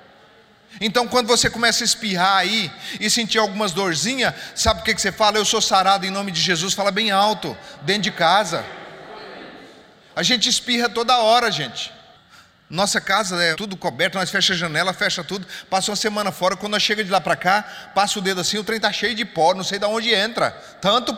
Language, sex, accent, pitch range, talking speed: Portuguese, male, Brazilian, 175-215 Hz, 205 wpm